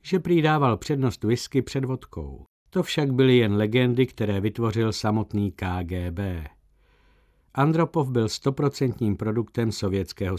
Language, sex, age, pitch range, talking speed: Czech, male, 60-79, 105-130 Hz, 115 wpm